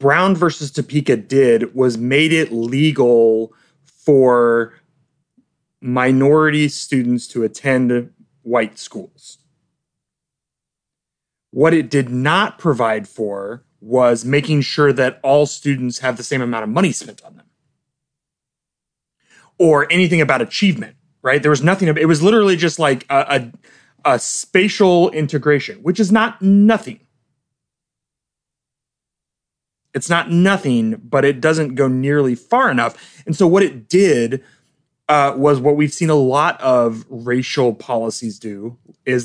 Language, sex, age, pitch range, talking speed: English, male, 30-49, 125-165 Hz, 130 wpm